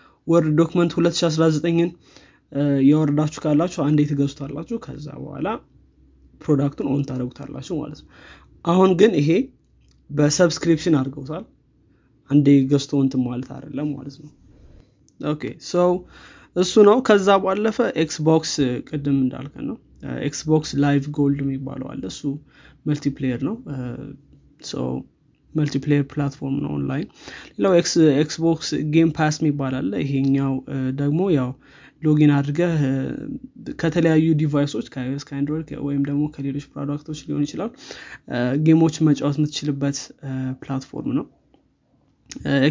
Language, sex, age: Amharic, male, 20-39